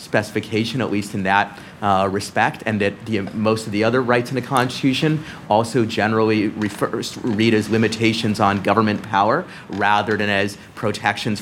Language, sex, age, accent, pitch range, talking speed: English, male, 30-49, American, 100-115 Hz, 170 wpm